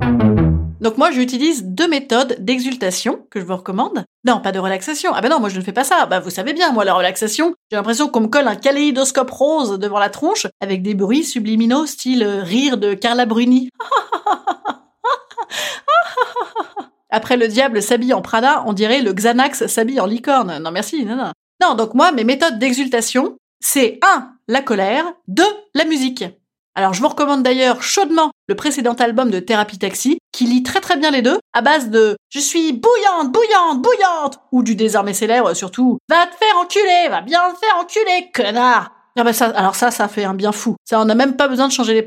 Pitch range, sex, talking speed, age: 215-295 Hz, female, 205 wpm, 30-49